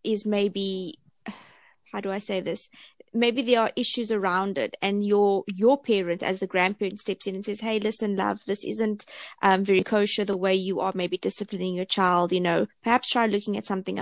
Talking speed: 200 wpm